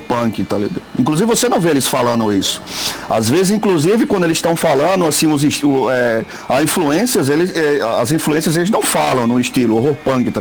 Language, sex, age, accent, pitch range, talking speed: Portuguese, male, 50-69, Brazilian, 130-190 Hz, 200 wpm